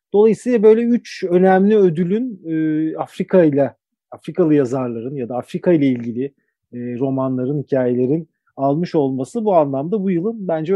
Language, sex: Turkish, male